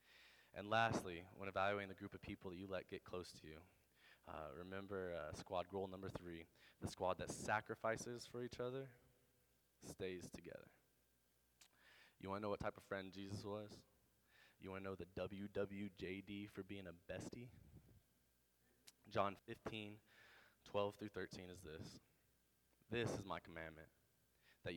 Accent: American